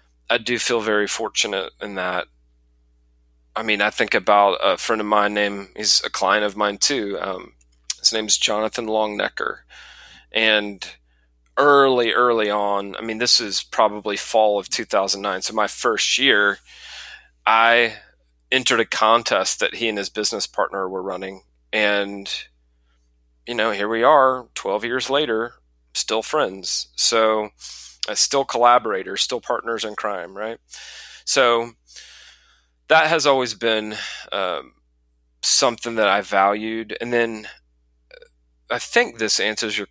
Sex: male